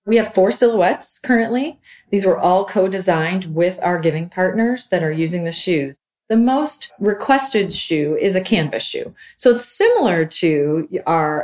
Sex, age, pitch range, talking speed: female, 30-49, 155-195 Hz, 165 wpm